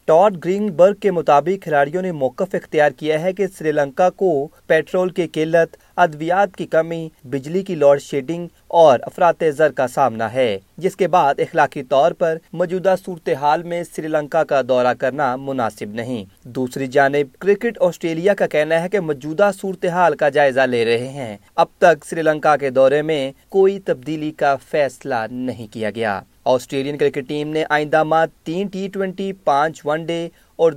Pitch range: 145-185 Hz